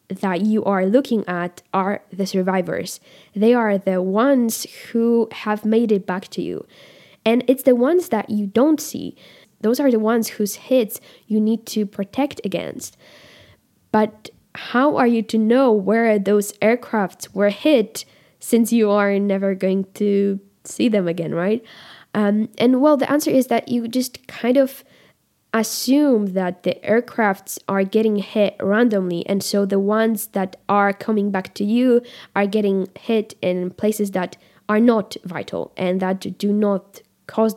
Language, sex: English, female